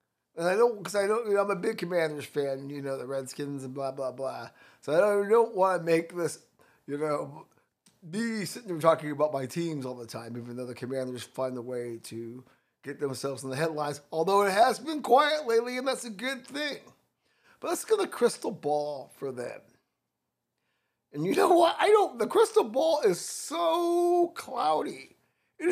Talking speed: 200 wpm